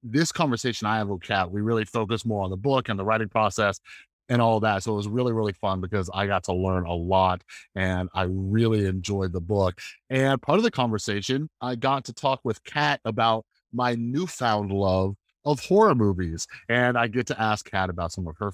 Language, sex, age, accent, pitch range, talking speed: English, male, 30-49, American, 100-125 Hz, 215 wpm